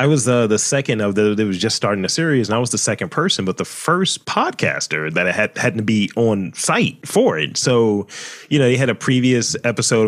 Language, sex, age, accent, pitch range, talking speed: English, male, 30-49, American, 100-120 Hz, 245 wpm